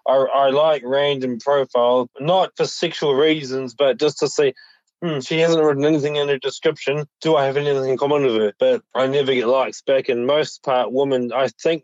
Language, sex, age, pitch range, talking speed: English, male, 20-39, 125-150 Hz, 210 wpm